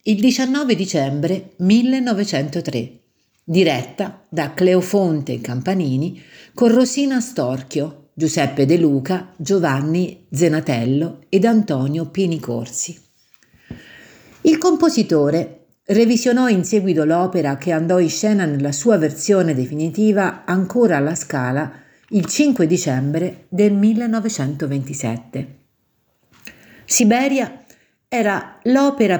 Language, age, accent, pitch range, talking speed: Italian, 50-69, native, 145-210 Hz, 90 wpm